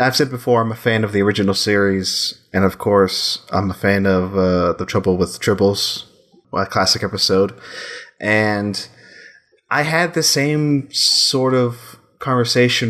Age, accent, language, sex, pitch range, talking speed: 30-49, American, English, male, 95-125 Hz, 155 wpm